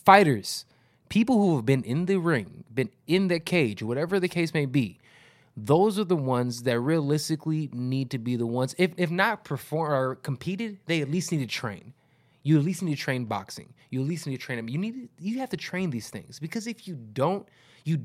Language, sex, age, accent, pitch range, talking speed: English, male, 20-39, American, 125-160 Hz, 225 wpm